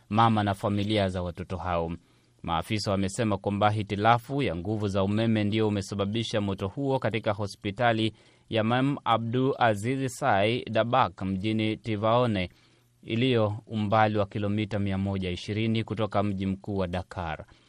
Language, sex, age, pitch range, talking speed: Swahili, male, 30-49, 100-125 Hz, 125 wpm